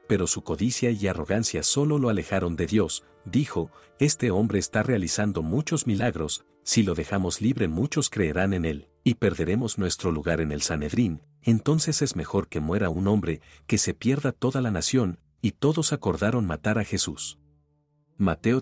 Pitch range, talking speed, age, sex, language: 80-115 Hz, 170 wpm, 50-69, male, English